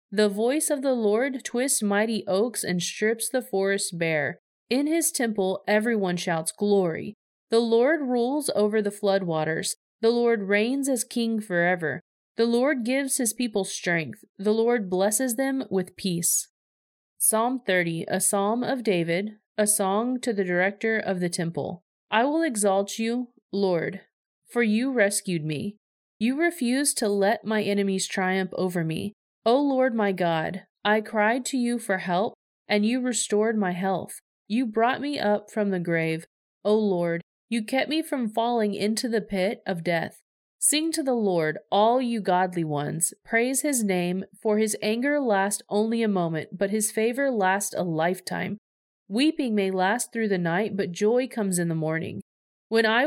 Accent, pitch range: American, 190-240 Hz